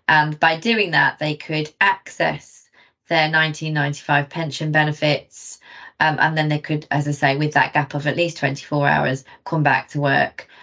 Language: English